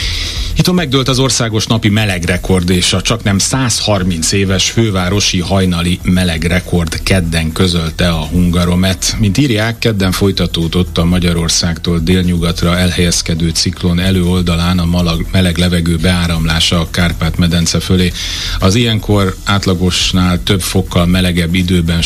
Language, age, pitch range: Hungarian, 30-49, 85-95 Hz